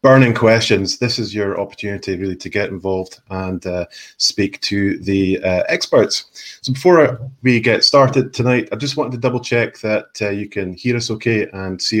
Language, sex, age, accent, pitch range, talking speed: English, male, 30-49, British, 100-125 Hz, 190 wpm